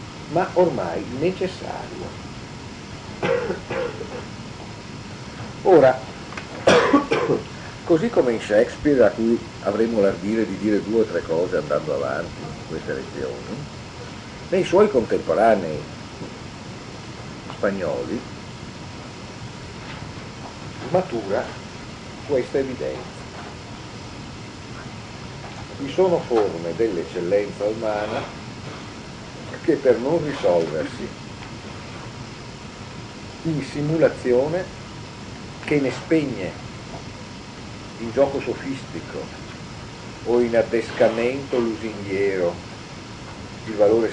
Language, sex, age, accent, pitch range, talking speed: Italian, male, 60-79, native, 105-135 Hz, 70 wpm